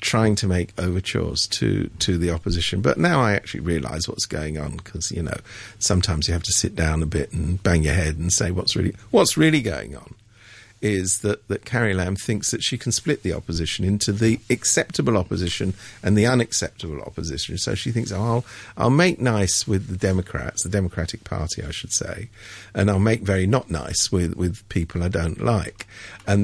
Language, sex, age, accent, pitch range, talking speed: English, male, 50-69, British, 95-145 Hz, 200 wpm